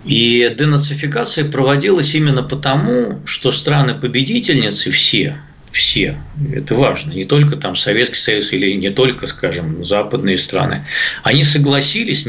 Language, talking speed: Russian, 120 wpm